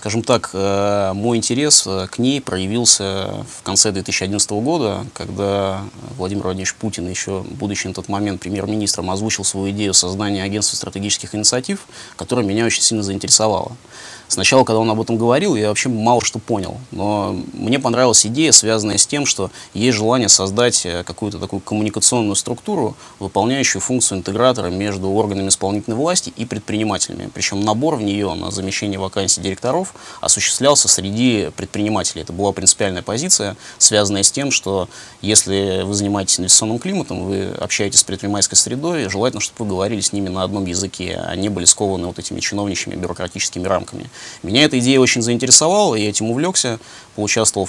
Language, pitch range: Russian, 95-115 Hz